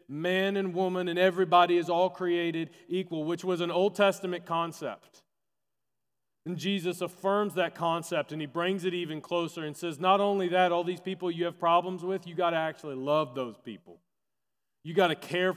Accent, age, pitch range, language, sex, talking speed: American, 40-59, 130-180 Hz, English, male, 190 wpm